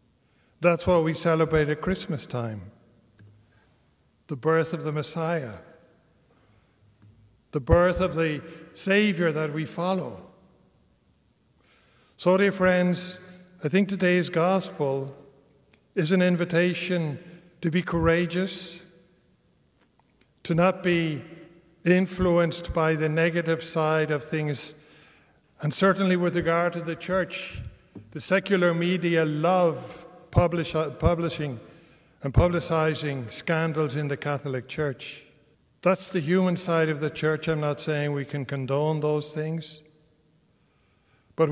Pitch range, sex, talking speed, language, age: 150-180 Hz, male, 115 wpm, English, 50-69